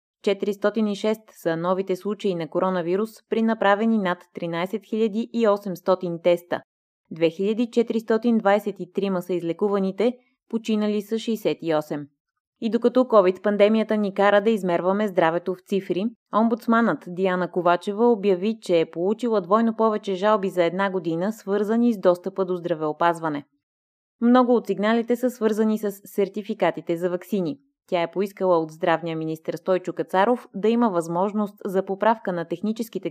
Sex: female